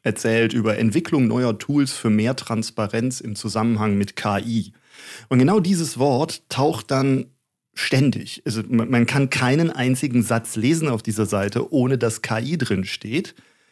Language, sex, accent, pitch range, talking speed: German, male, German, 115-145 Hz, 145 wpm